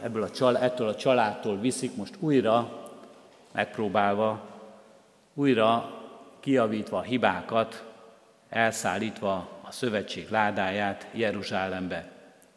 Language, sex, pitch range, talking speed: Hungarian, male, 105-125 Hz, 90 wpm